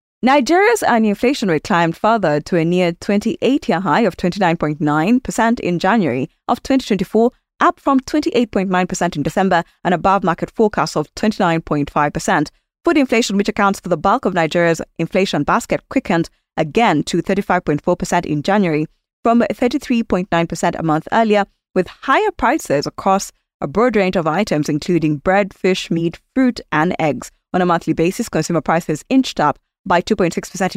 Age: 20-39